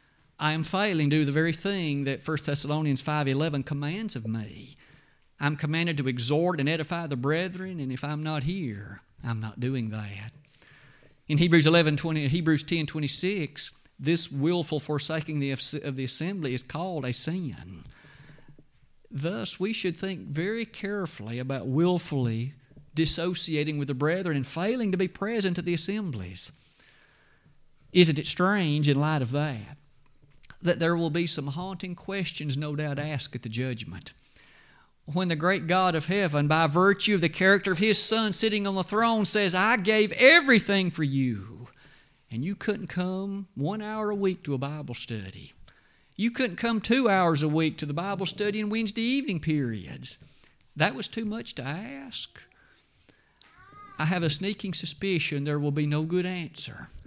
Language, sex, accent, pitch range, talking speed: English, male, American, 140-185 Hz, 160 wpm